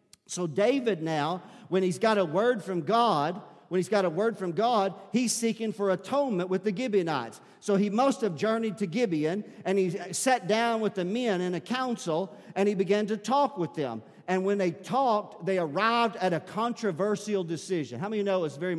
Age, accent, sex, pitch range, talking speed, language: 50-69, American, male, 140-200 Hz, 210 wpm, English